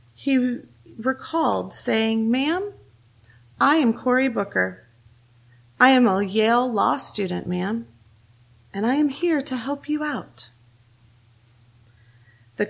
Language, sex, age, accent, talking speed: English, female, 30-49, American, 115 wpm